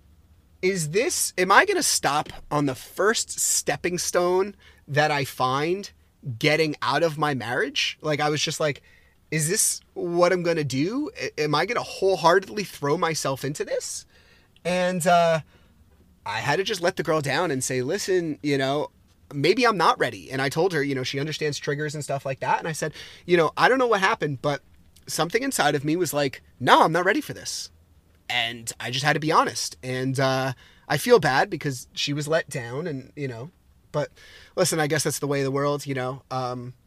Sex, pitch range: male, 125-160 Hz